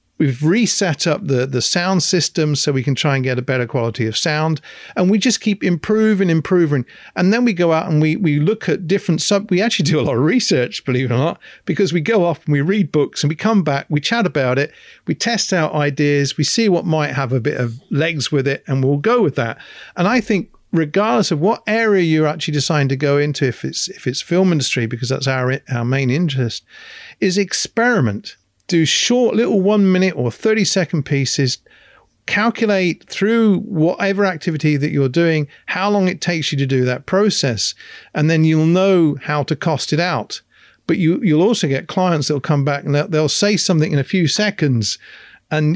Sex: male